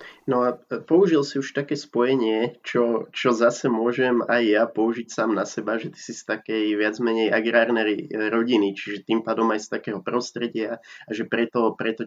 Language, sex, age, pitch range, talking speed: Slovak, male, 20-39, 110-115 Hz, 185 wpm